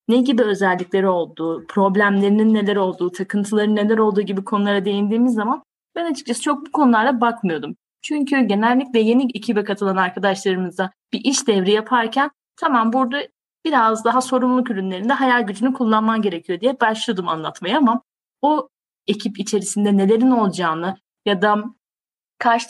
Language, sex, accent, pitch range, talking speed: Turkish, female, native, 205-260 Hz, 135 wpm